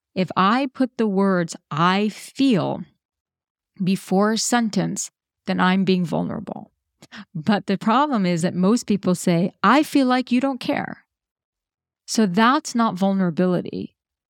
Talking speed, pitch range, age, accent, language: 135 wpm, 185-220 Hz, 40-59, American, English